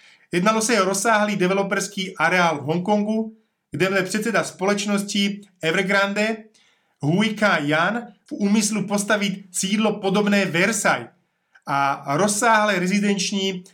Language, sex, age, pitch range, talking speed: Slovak, male, 30-49, 170-210 Hz, 115 wpm